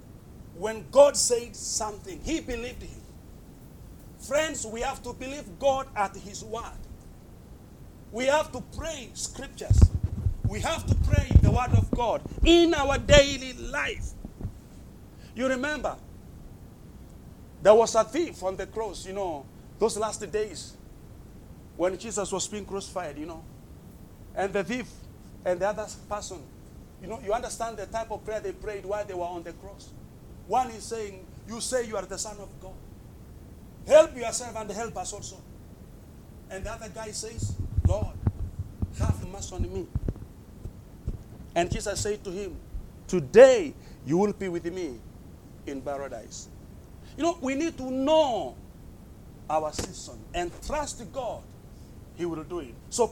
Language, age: English, 40-59